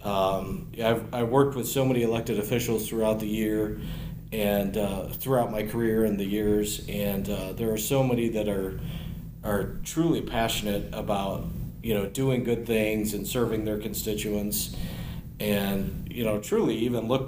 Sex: male